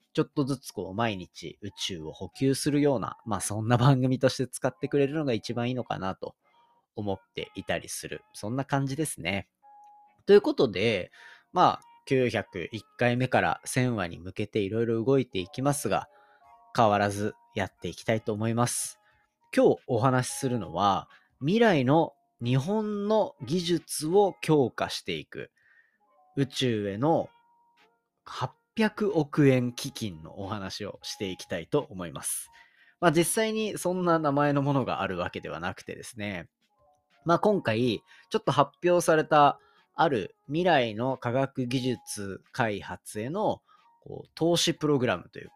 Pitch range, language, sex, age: 120-170 Hz, Japanese, male, 30-49